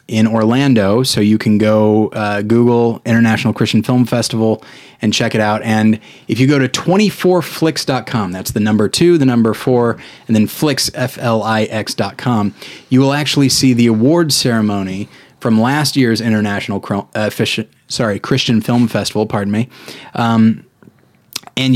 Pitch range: 105-125 Hz